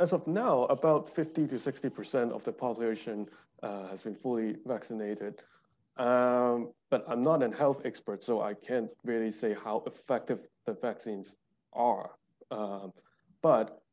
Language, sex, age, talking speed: English, male, 20-39, 145 wpm